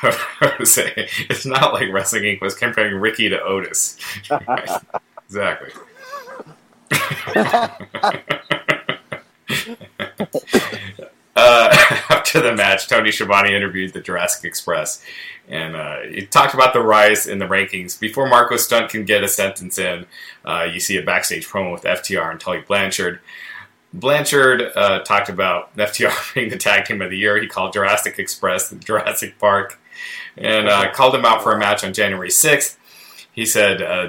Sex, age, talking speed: male, 30-49, 150 wpm